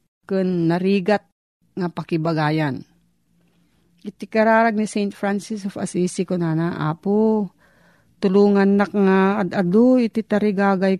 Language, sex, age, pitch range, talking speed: Filipino, female, 40-59, 170-210 Hz, 115 wpm